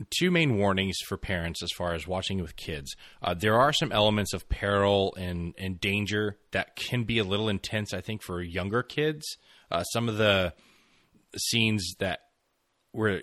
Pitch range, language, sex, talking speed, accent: 90-110 Hz, English, male, 175 wpm, American